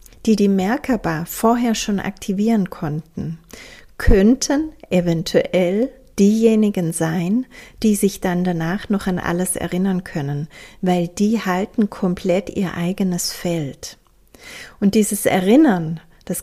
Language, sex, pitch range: German, female, 180-210 Hz